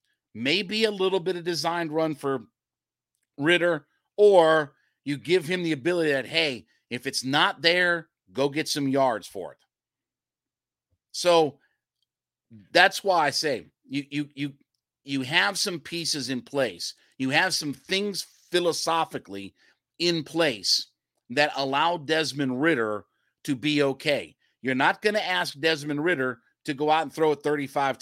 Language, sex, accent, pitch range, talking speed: English, male, American, 135-170 Hz, 150 wpm